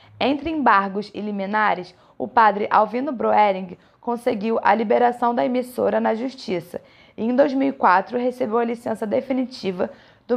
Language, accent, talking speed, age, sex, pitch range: Portuguese, Brazilian, 135 wpm, 20-39, female, 200-245 Hz